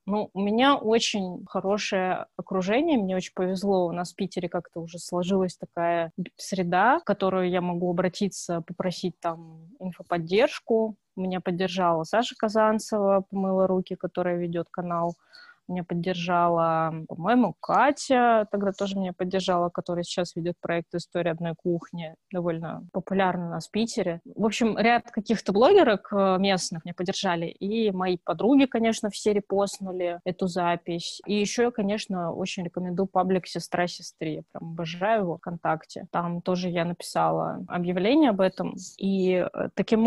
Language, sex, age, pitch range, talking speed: Russian, female, 20-39, 175-205 Hz, 140 wpm